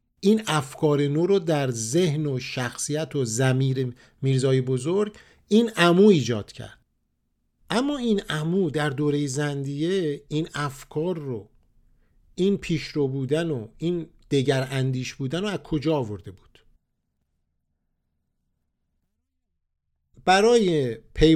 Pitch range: 120-170 Hz